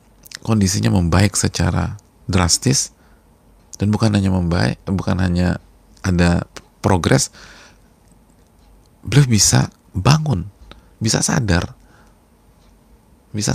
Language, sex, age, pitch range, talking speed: Indonesian, male, 40-59, 85-110 Hz, 80 wpm